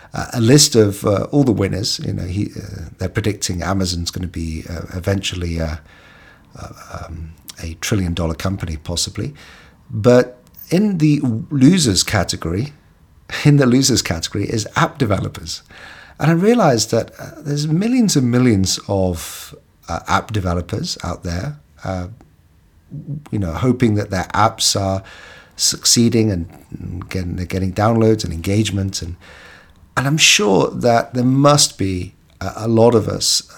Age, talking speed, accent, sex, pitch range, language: 50-69, 140 wpm, British, male, 90-115 Hz, English